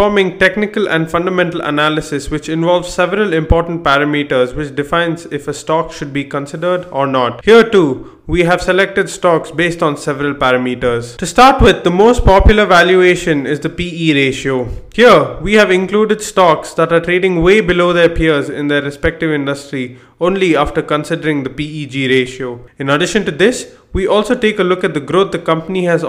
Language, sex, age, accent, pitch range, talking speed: English, male, 20-39, Indian, 145-185 Hz, 180 wpm